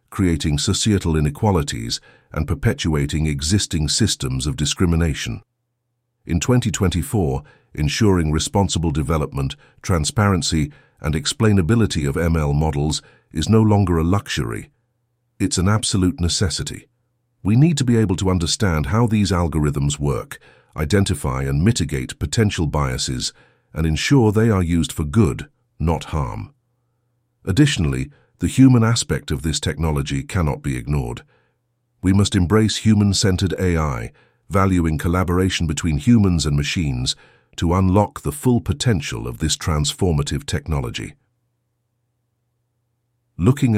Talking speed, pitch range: 115 wpm, 80-120 Hz